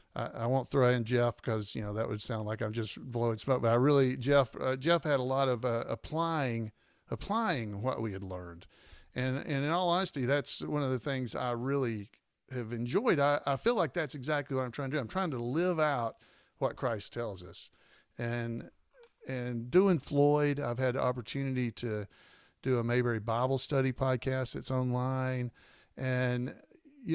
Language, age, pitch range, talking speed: English, 50-69, 115-145 Hz, 190 wpm